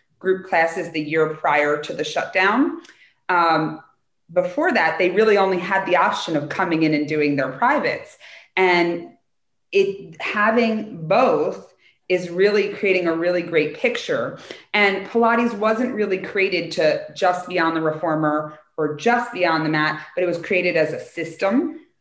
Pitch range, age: 160-210 Hz, 30-49